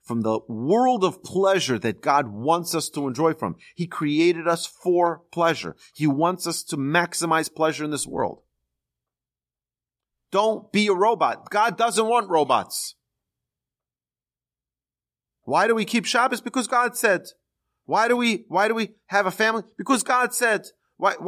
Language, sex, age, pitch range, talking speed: English, male, 40-59, 140-215 Hz, 155 wpm